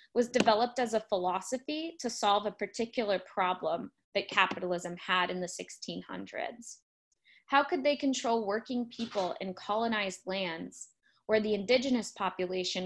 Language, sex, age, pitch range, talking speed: English, female, 20-39, 195-245 Hz, 135 wpm